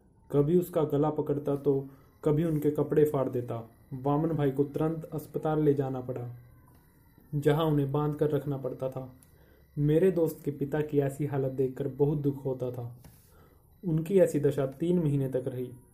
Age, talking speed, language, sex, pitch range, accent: 20-39, 165 wpm, Hindi, male, 130-150 Hz, native